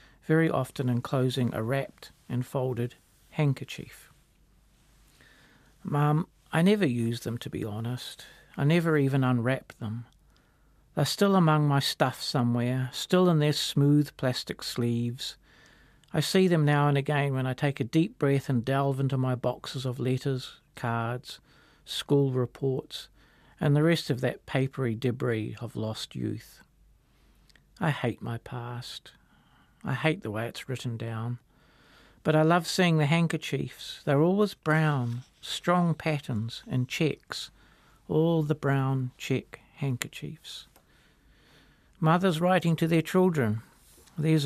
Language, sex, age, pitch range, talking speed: English, male, 50-69, 125-155 Hz, 135 wpm